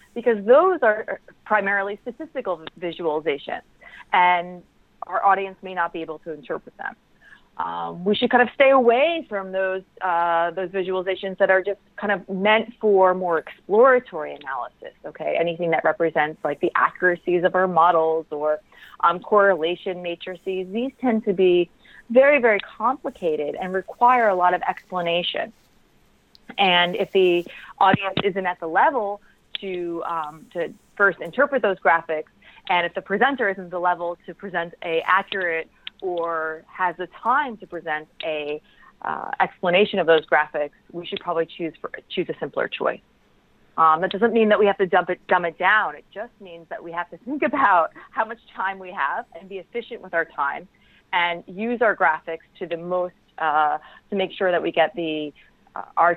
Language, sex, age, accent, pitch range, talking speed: English, female, 30-49, American, 170-205 Hz, 175 wpm